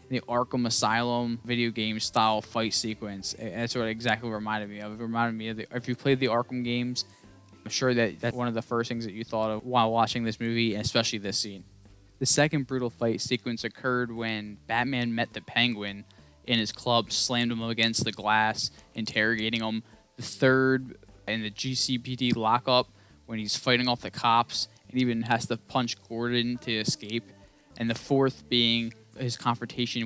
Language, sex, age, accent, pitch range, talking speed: English, male, 10-29, American, 110-125 Hz, 185 wpm